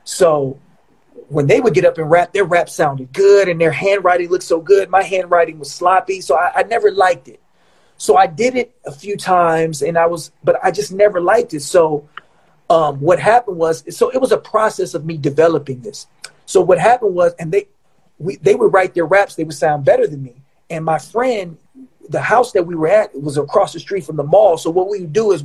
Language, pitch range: English, 160-200 Hz